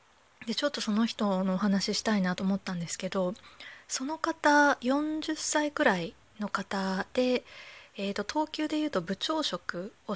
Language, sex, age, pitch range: Japanese, female, 20-39, 190-260 Hz